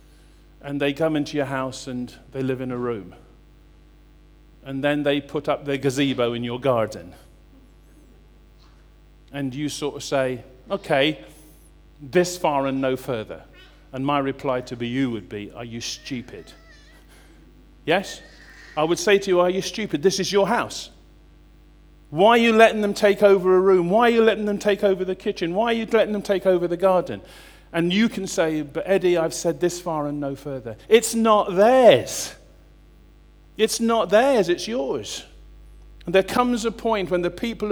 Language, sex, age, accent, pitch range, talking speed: English, male, 40-59, British, 135-205 Hz, 180 wpm